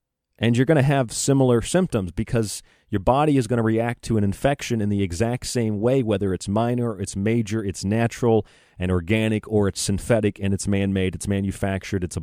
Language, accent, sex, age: English, American, male, 40-59